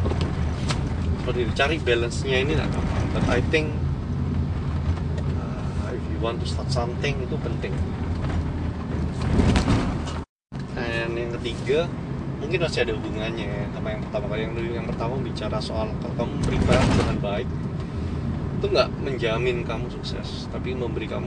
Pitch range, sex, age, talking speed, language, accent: 75-85 Hz, male, 20-39, 125 wpm, Indonesian, native